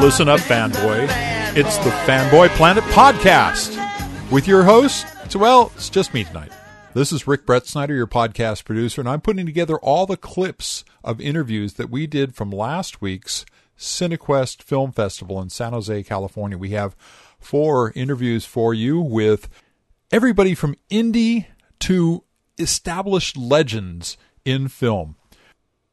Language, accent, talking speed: English, American, 140 wpm